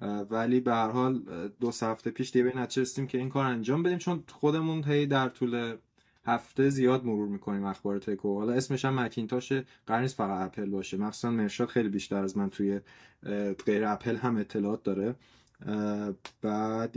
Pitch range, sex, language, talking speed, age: 110-150 Hz, male, Persian, 165 wpm, 20-39